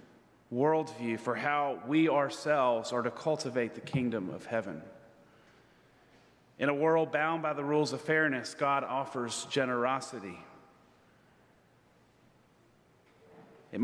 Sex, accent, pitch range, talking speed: male, American, 125-155 Hz, 110 wpm